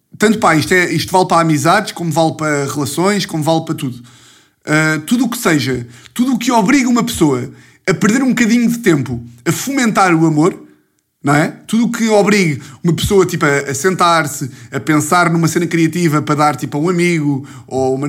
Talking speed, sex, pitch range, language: 205 wpm, male, 135-175 Hz, Portuguese